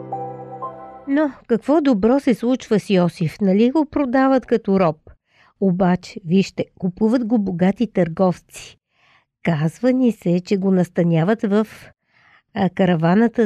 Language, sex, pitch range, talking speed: Bulgarian, female, 175-220 Hz, 115 wpm